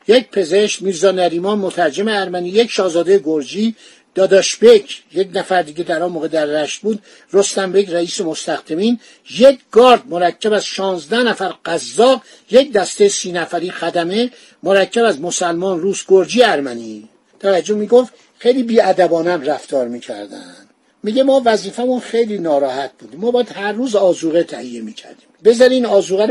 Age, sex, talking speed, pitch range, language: 60-79, male, 145 wpm, 180-240 Hz, Persian